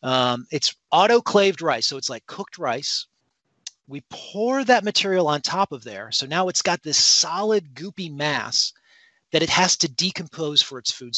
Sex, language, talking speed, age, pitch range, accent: male, English, 175 wpm, 40-59, 135-200 Hz, American